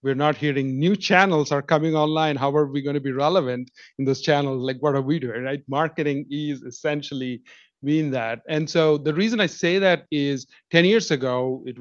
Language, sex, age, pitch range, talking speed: English, male, 30-49, 135-170 Hz, 205 wpm